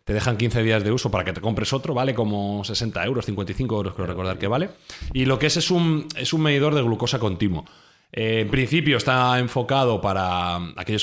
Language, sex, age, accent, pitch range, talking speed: Spanish, male, 30-49, Spanish, 95-125 Hz, 210 wpm